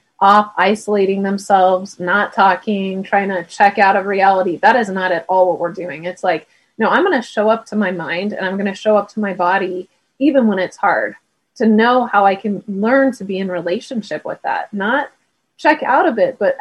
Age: 20-39